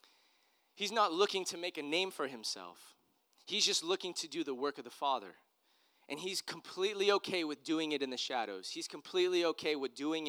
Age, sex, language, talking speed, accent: 20-39, male, English, 200 wpm, American